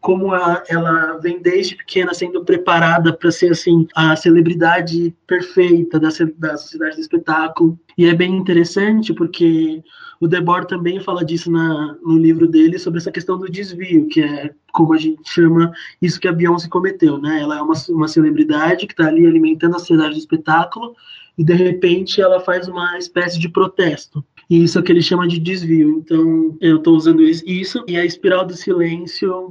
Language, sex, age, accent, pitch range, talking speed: Portuguese, male, 20-39, Brazilian, 160-180 Hz, 185 wpm